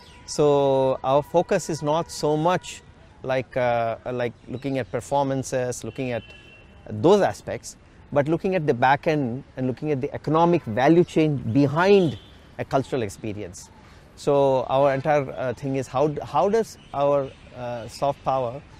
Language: English